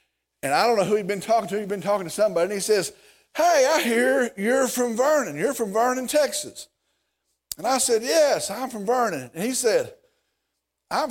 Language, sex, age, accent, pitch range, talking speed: English, male, 50-69, American, 205-300 Hz, 205 wpm